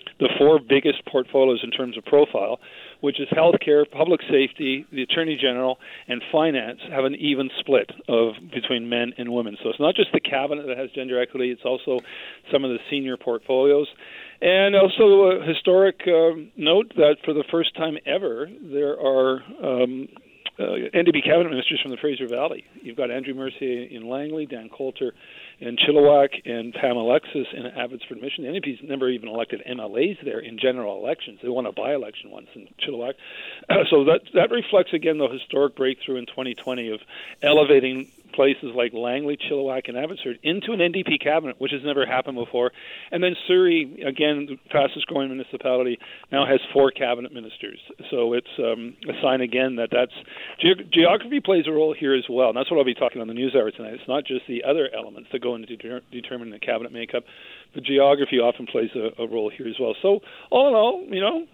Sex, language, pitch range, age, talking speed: male, English, 125-155 Hz, 50-69, 190 wpm